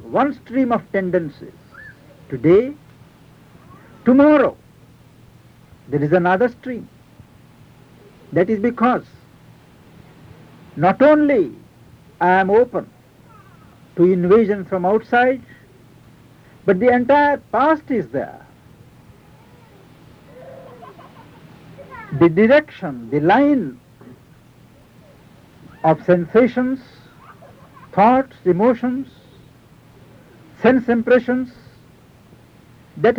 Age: 60-79